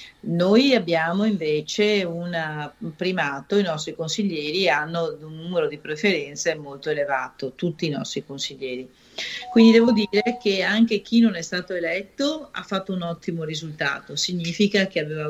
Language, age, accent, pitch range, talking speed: Italian, 40-59, native, 155-205 Hz, 150 wpm